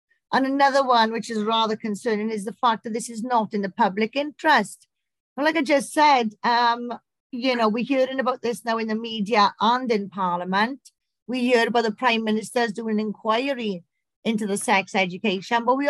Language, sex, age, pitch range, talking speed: English, female, 40-59, 215-265 Hz, 195 wpm